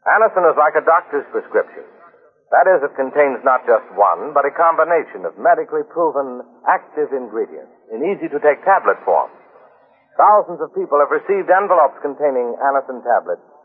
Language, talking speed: English, 150 wpm